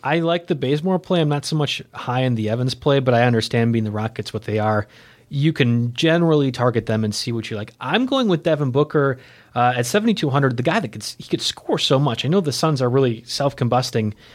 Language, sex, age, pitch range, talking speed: English, male, 30-49, 120-145 Hz, 240 wpm